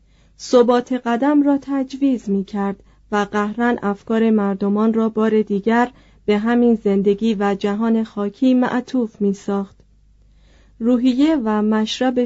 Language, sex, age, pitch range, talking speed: Persian, female, 30-49, 205-250 Hz, 115 wpm